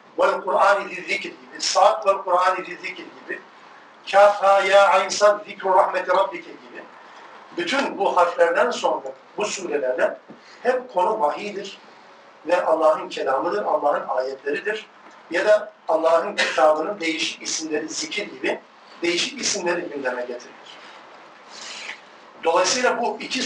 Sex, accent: male, native